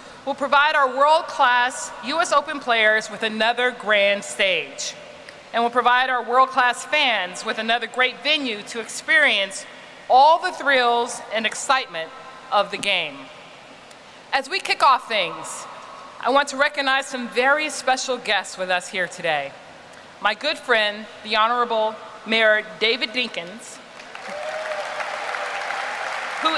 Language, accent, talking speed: English, American, 130 wpm